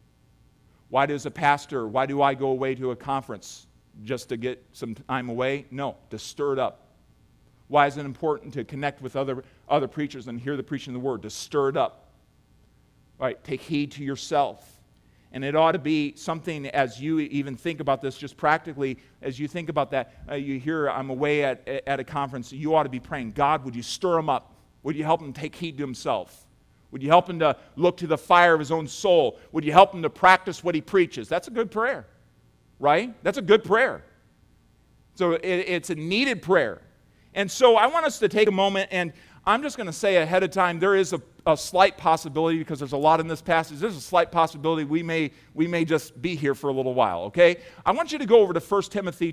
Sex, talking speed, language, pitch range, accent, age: male, 230 wpm, English, 135-175 Hz, American, 40-59